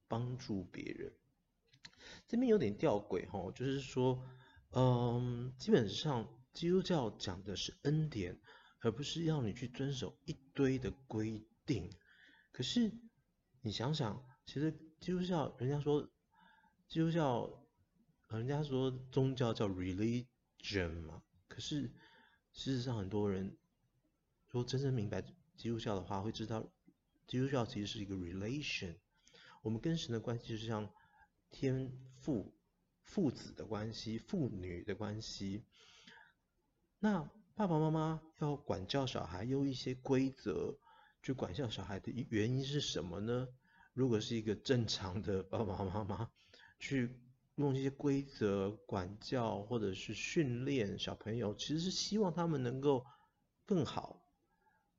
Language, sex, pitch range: Chinese, male, 110-145 Hz